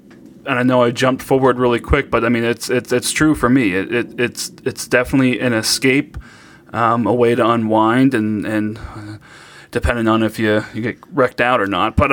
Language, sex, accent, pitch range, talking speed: English, male, American, 115-135 Hz, 215 wpm